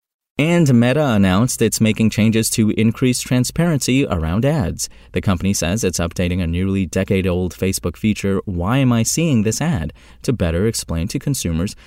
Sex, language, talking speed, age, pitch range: male, English, 165 wpm, 30-49, 90-125 Hz